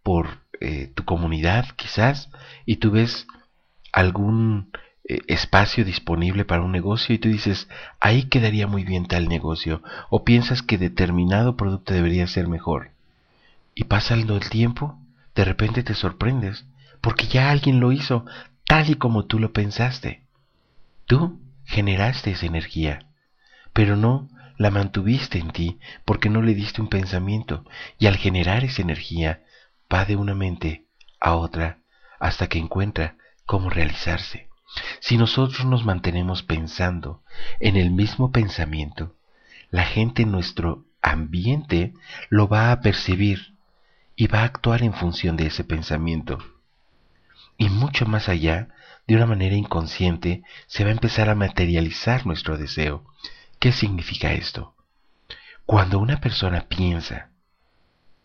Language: Spanish